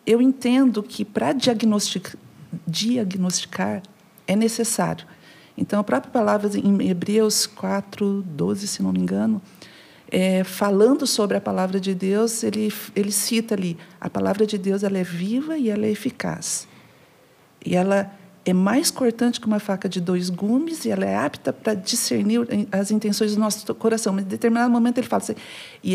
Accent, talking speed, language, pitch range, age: Brazilian, 165 wpm, Portuguese, 185-225 Hz, 50-69